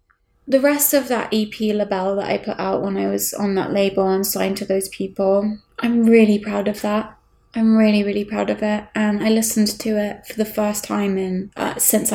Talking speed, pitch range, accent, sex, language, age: 215 wpm, 205-250 Hz, British, female, English, 20-39